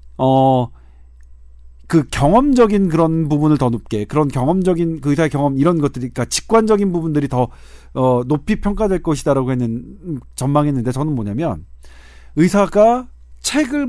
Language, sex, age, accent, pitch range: Korean, male, 40-59, native, 130-210 Hz